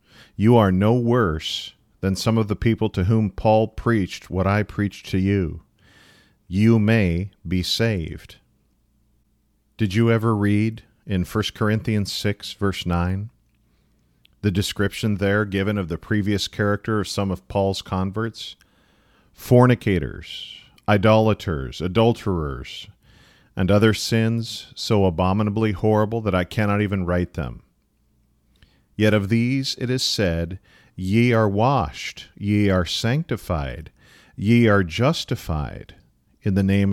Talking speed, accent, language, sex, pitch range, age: 125 wpm, American, English, male, 90-110 Hz, 40-59